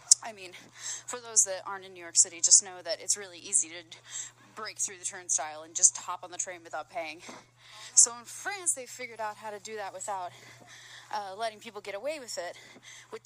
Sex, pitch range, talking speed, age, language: female, 195-270 Hz, 215 wpm, 20-39, English